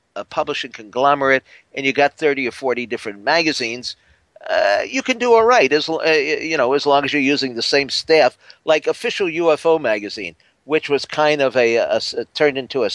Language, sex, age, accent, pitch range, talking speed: English, male, 50-69, American, 120-155 Hz, 200 wpm